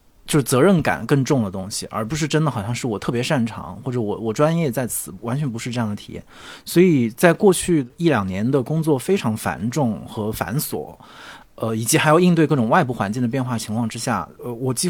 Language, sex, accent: Chinese, male, native